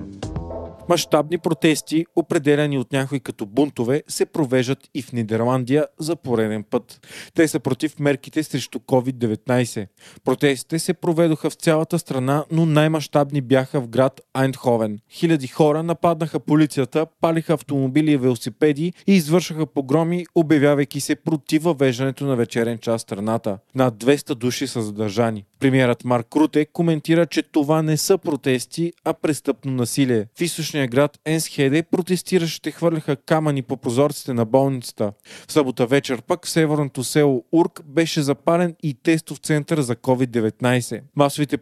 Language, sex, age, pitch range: Bulgarian, male, 40-59, 130-160 Hz